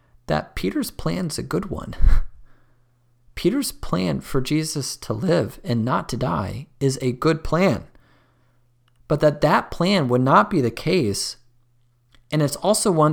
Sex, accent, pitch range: male, American, 120-155 Hz